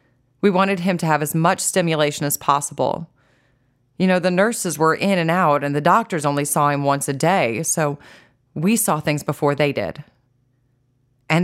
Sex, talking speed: female, 185 wpm